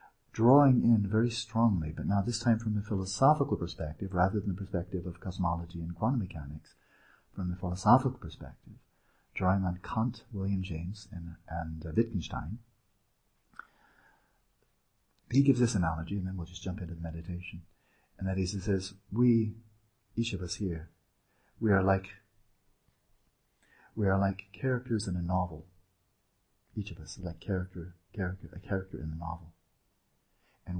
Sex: male